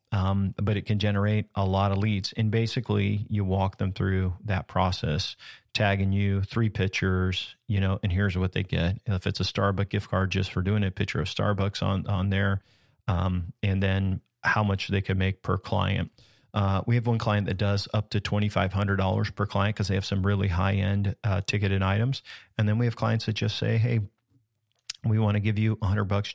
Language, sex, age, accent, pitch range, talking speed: English, male, 40-59, American, 95-110 Hz, 205 wpm